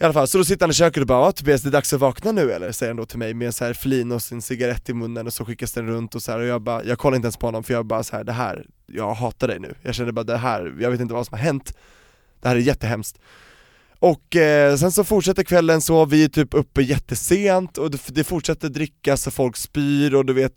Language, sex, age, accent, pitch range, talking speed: Swedish, male, 20-39, native, 120-155 Hz, 285 wpm